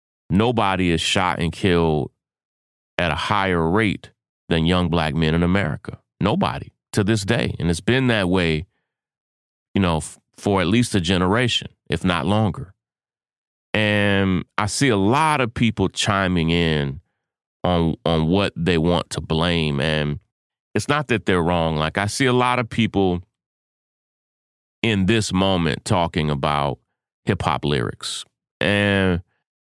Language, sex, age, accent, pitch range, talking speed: English, male, 30-49, American, 80-105 Hz, 145 wpm